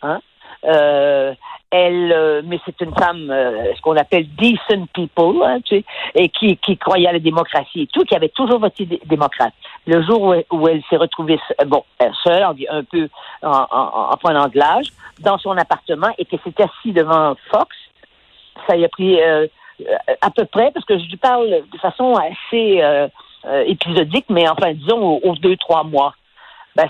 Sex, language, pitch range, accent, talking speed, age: female, French, 165-220 Hz, French, 190 wpm, 50-69